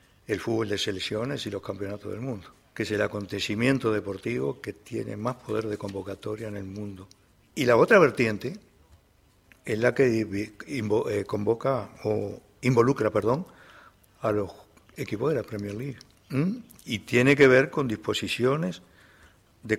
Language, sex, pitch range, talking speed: Spanish, male, 105-125 Hz, 150 wpm